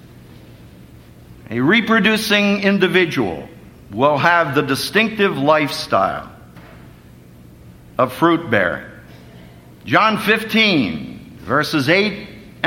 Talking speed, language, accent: 70 wpm, English, American